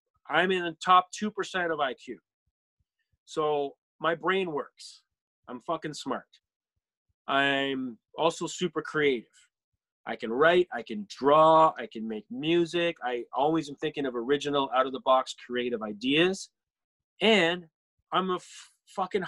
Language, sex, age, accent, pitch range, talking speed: English, male, 20-39, American, 130-180 Hz, 130 wpm